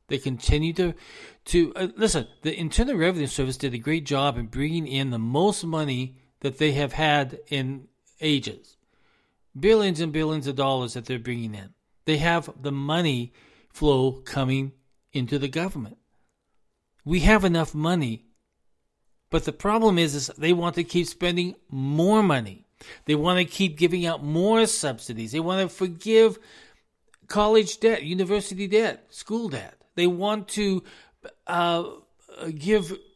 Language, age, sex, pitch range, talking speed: English, 40-59, male, 135-195 Hz, 150 wpm